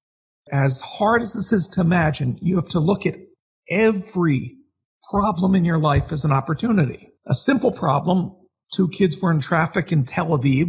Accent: American